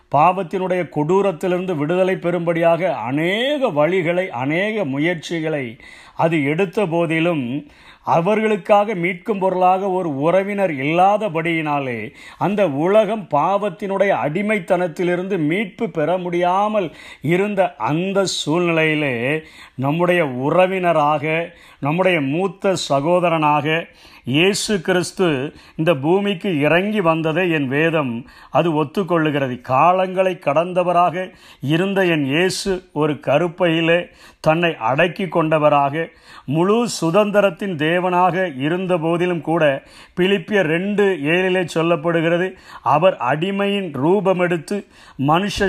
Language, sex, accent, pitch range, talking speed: Tamil, male, native, 155-190 Hz, 85 wpm